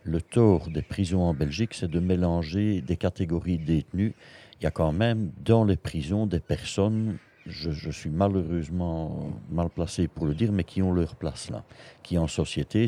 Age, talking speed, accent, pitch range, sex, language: 60-79, 185 wpm, French, 85-105 Hz, male, French